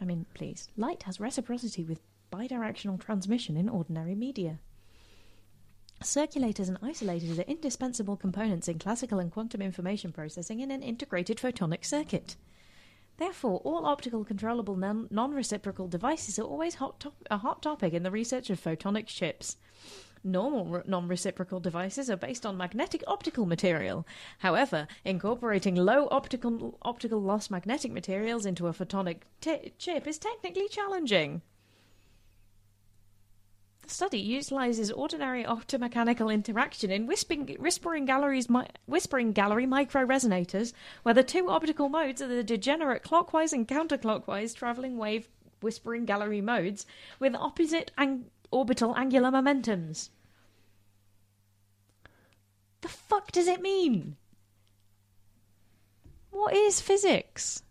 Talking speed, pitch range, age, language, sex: 120 wpm, 170-265 Hz, 30-49, English, female